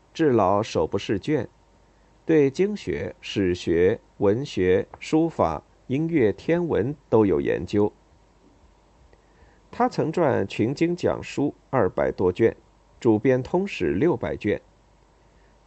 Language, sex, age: Chinese, male, 50-69